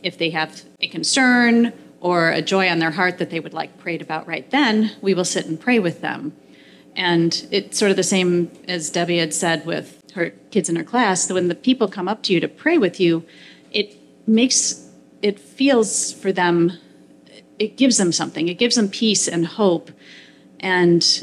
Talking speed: 200 wpm